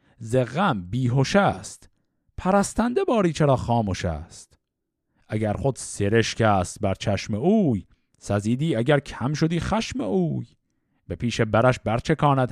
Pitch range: 110-185 Hz